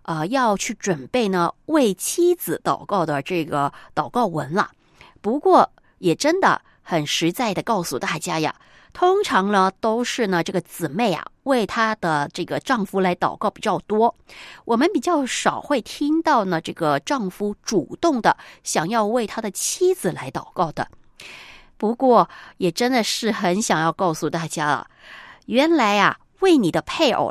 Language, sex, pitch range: Chinese, female, 175-280 Hz